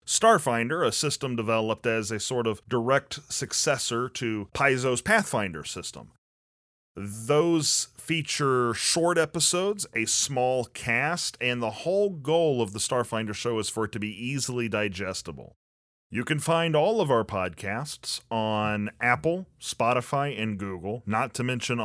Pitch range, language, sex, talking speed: 110-145 Hz, English, male, 140 wpm